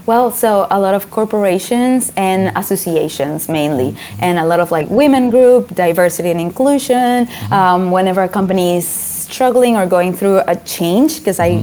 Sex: female